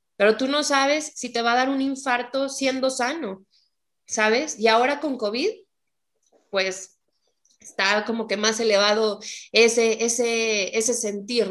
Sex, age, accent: female, 20-39, Mexican